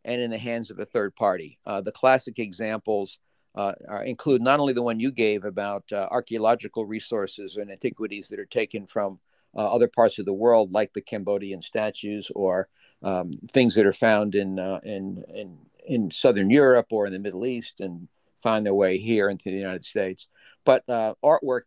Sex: male